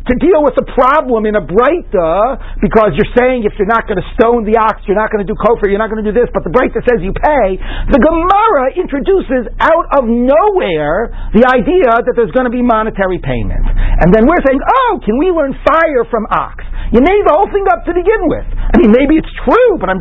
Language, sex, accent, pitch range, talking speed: English, male, American, 145-230 Hz, 235 wpm